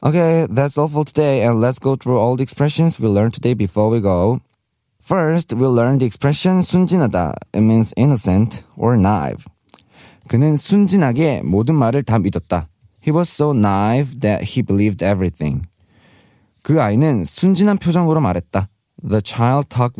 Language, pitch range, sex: Korean, 105-145 Hz, male